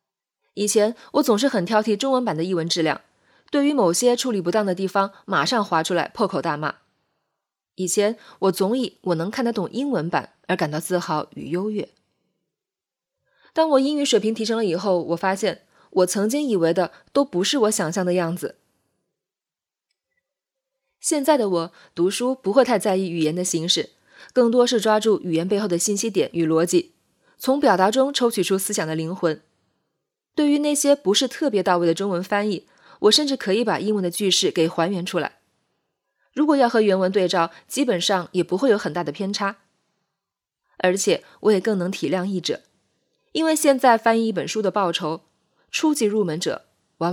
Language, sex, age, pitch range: Chinese, female, 20-39, 180-240 Hz